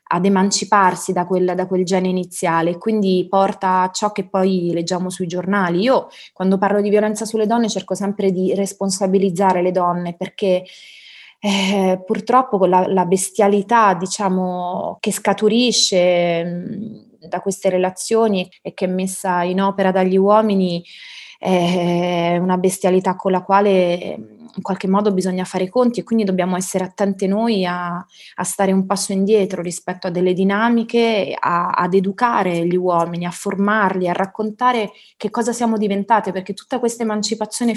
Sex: female